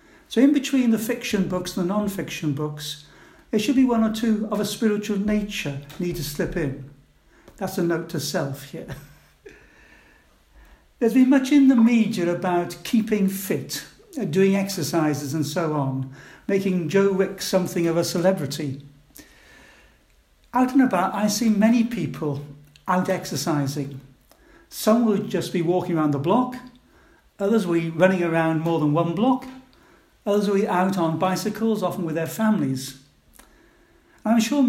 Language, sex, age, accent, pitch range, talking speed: English, male, 60-79, British, 160-220 Hz, 150 wpm